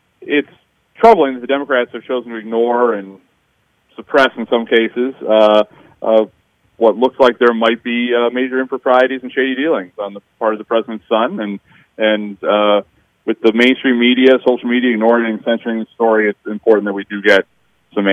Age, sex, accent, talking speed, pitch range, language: 30-49, male, American, 185 wpm, 110-130 Hz, English